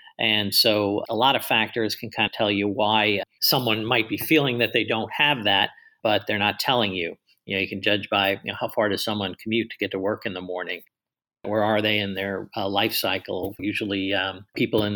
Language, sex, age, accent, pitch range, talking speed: English, male, 50-69, American, 100-115 Hz, 230 wpm